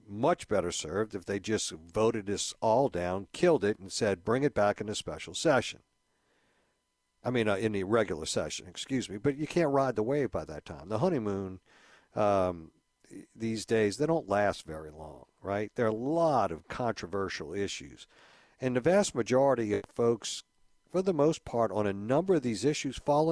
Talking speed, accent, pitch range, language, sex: 190 wpm, American, 100-135 Hz, English, male